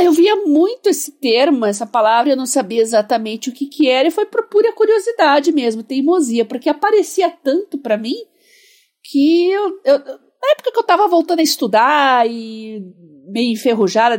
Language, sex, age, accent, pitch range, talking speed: Portuguese, female, 50-69, Brazilian, 225-305 Hz, 175 wpm